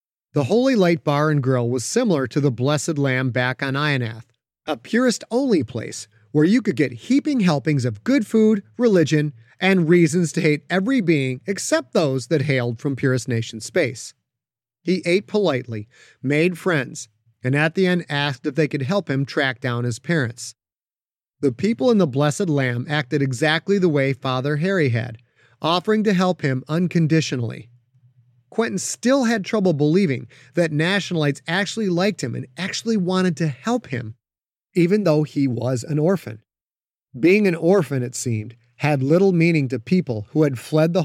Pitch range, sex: 125-180 Hz, male